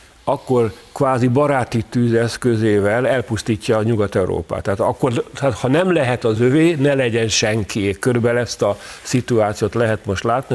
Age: 50-69